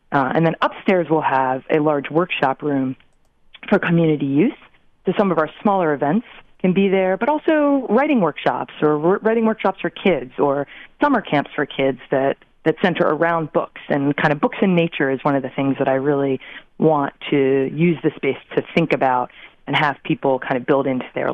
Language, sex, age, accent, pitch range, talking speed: English, female, 30-49, American, 140-175 Hz, 200 wpm